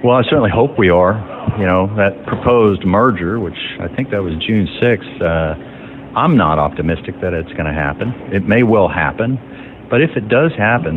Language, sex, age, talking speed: English, male, 50-69, 195 wpm